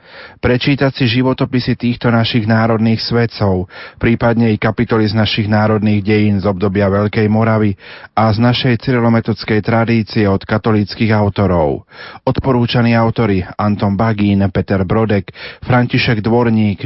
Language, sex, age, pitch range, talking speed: Slovak, male, 30-49, 105-120 Hz, 120 wpm